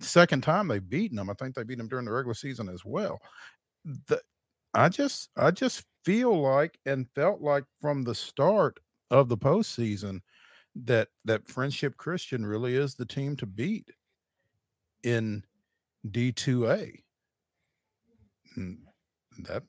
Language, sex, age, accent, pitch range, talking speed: English, male, 50-69, American, 100-125 Hz, 145 wpm